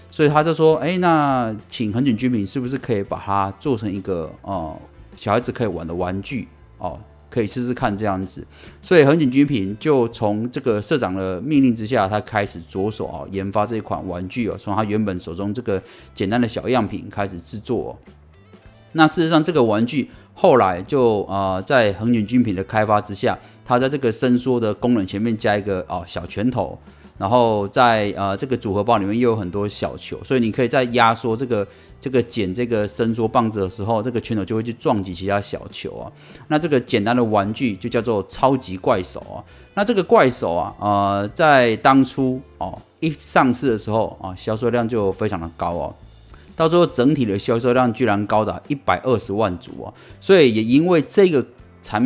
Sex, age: male, 30-49